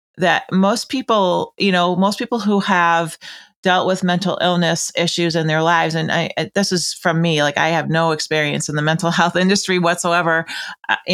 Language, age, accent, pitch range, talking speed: English, 40-59, American, 160-195 Hz, 190 wpm